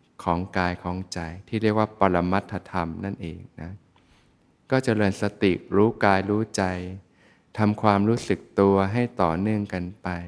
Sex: male